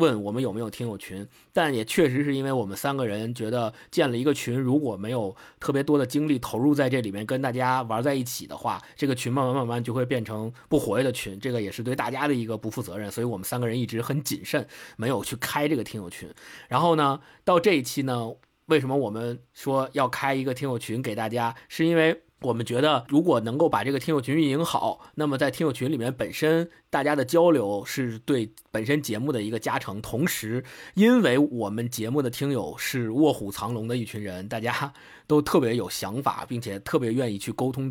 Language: Chinese